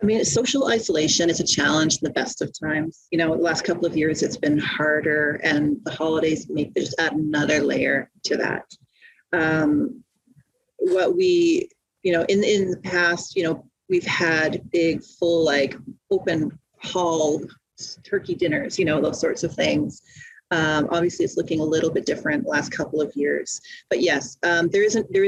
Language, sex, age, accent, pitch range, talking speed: English, female, 30-49, American, 155-200 Hz, 185 wpm